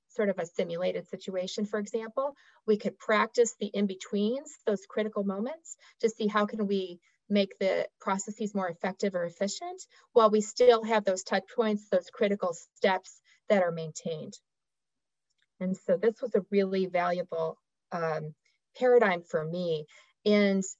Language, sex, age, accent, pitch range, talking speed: English, female, 40-59, American, 185-235 Hz, 150 wpm